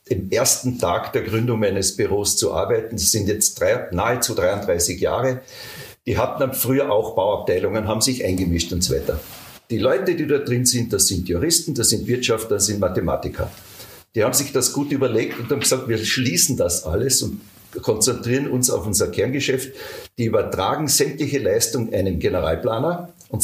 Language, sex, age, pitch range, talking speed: German, male, 50-69, 110-175 Hz, 175 wpm